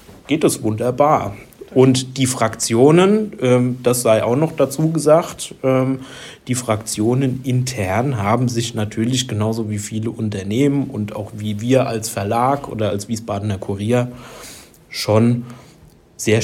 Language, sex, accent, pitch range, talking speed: German, male, German, 110-130 Hz, 125 wpm